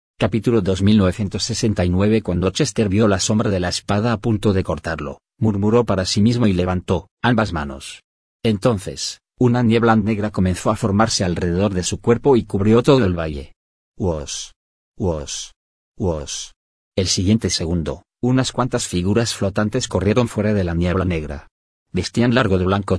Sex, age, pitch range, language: male, 40-59, 90-110 Hz, Spanish